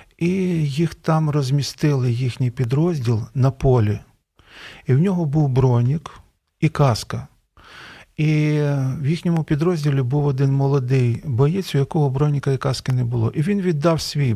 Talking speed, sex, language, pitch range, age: 140 wpm, male, Ukrainian, 120-155 Hz, 40-59